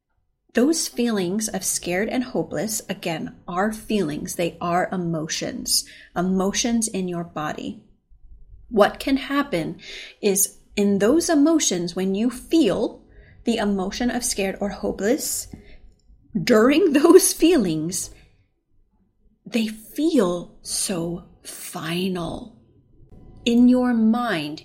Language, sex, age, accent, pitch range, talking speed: English, female, 30-49, American, 180-240 Hz, 100 wpm